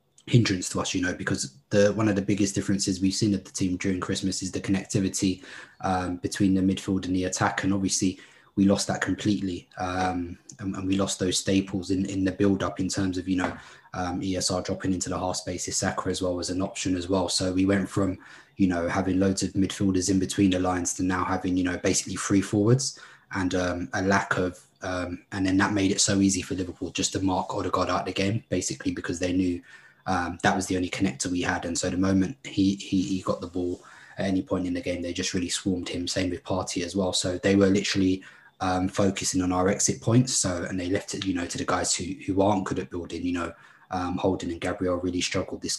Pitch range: 90-95 Hz